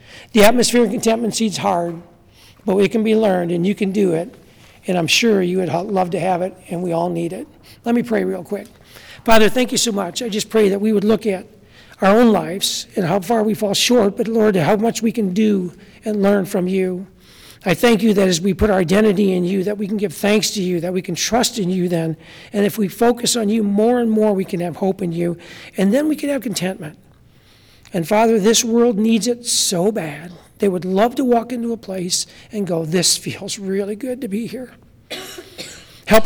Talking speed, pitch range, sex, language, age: 230 wpm, 175-220 Hz, male, English, 60-79